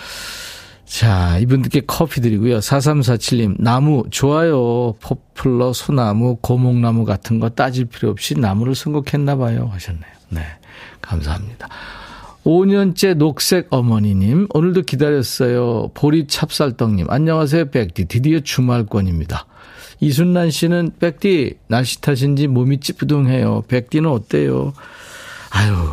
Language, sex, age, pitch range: Korean, male, 50-69, 110-155 Hz